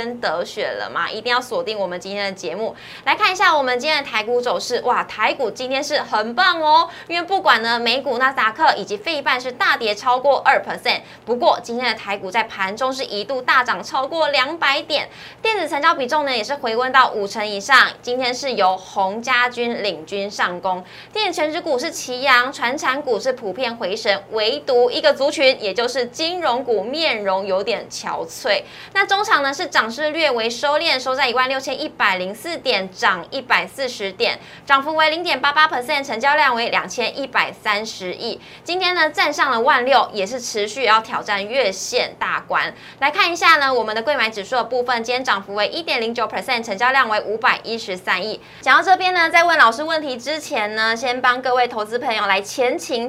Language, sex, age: Chinese, female, 20-39